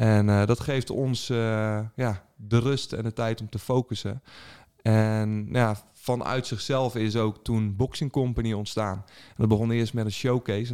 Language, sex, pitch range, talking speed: Dutch, male, 105-120 Hz, 180 wpm